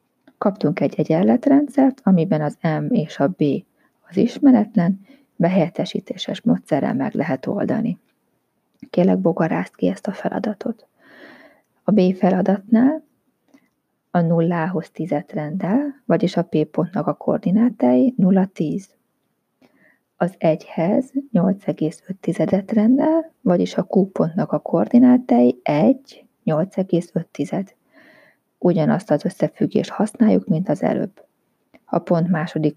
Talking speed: 105 wpm